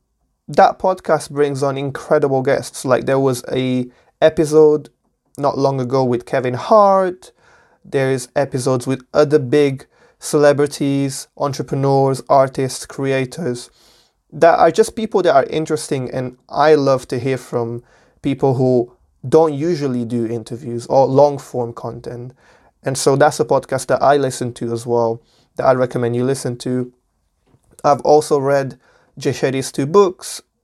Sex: male